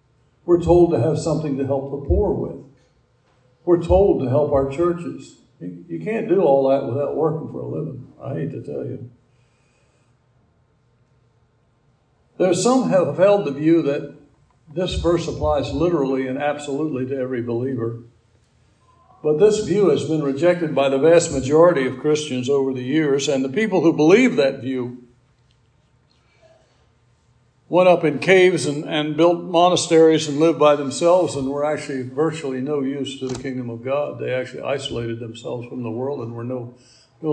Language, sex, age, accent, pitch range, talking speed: English, male, 60-79, American, 125-155 Hz, 170 wpm